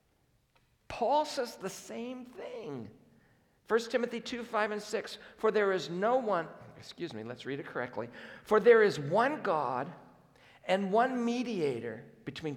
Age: 50-69